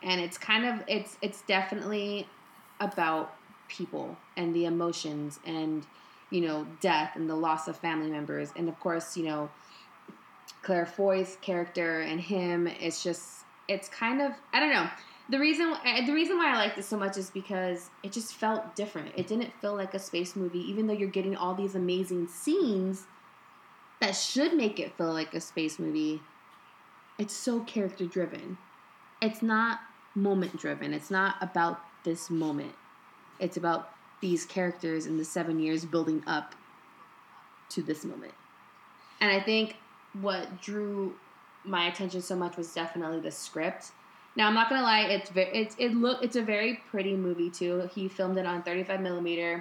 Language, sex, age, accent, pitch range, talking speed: English, female, 20-39, American, 165-200 Hz, 170 wpm